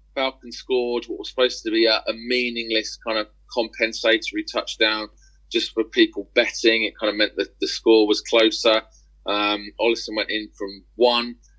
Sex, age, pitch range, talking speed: male, 30-49, 115-140 Hz, 170 wpm